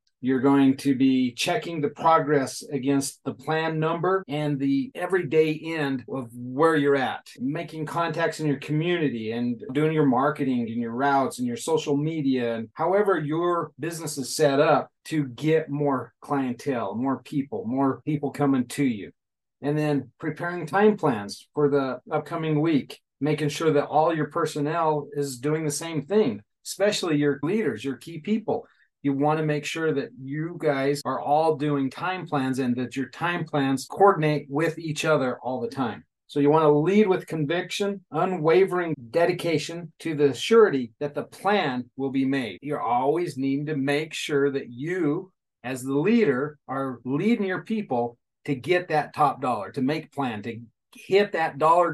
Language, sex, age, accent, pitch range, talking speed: English, male, 40-59, American, 135-165 Hz, 170 wpm